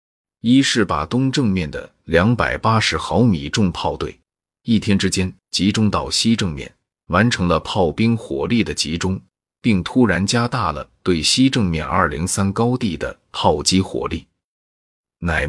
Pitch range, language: 80-110 Hz, Chinese